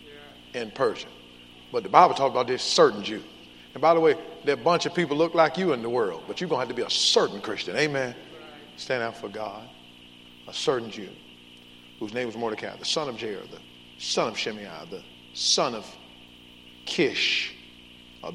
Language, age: English, 50-69